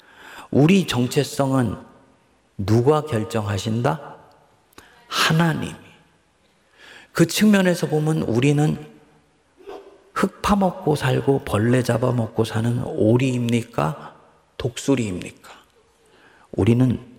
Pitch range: 105-165 Hz